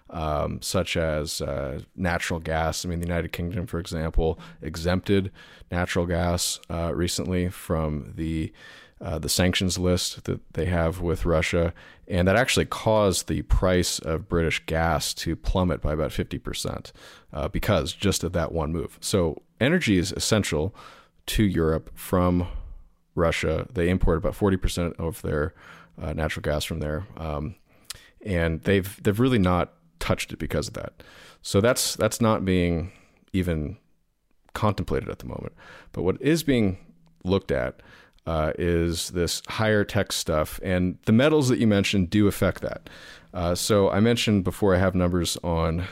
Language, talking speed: English, 155 wpm